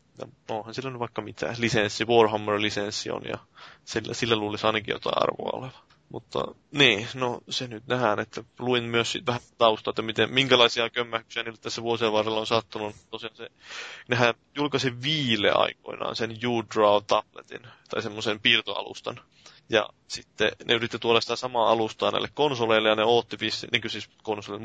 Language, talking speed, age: Finnish, 170 wpm, 20-39